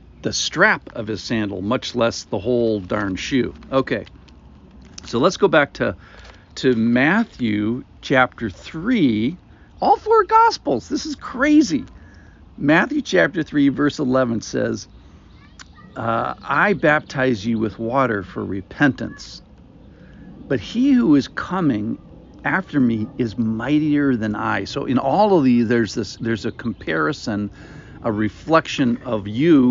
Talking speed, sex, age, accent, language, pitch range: 135 wpm, male, 50-69, American, English, 115-155 Hz